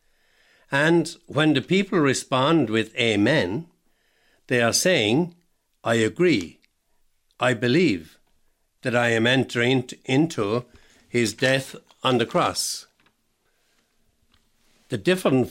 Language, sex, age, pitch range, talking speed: English, male, 60-79, 115-145 Hz, 100 wpm